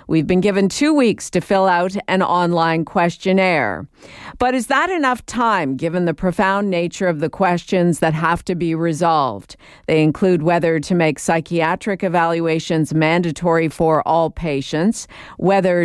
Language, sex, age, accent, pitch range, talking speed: English, female, 50-69, American, 155-185 Hz, 150 wpm